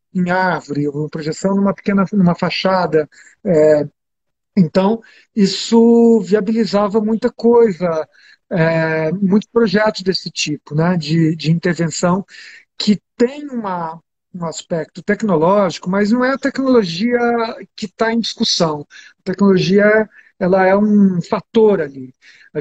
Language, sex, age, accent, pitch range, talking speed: Portuguese, male, 50-69, Brazilian, 170-220 Hz, 125 wpm